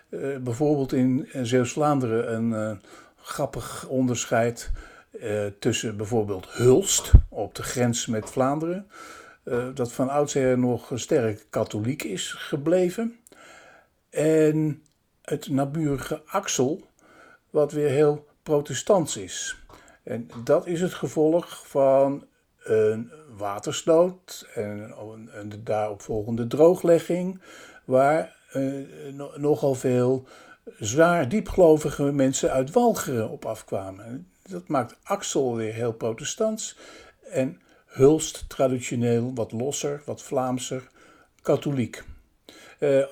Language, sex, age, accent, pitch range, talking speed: Dutch, male, 60-79, Dutch, 120-155 Hz, 105 wpm